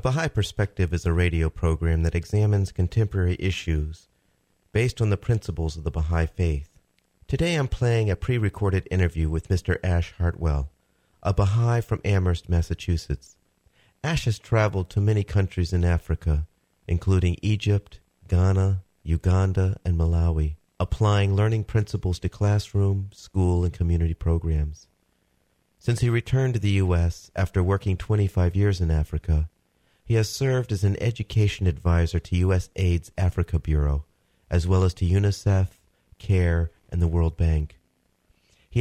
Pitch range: 80-100 Hz